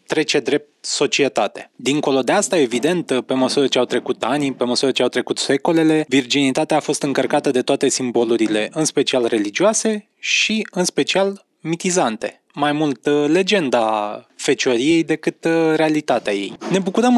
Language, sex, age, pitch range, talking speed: Romanian, male, 20-39, 140-180 Hz, 145 wpm